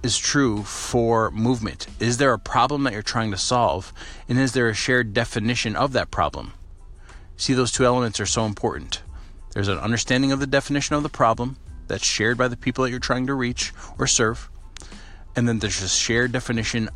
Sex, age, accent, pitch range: male, 40-59, American, 95-120 Hz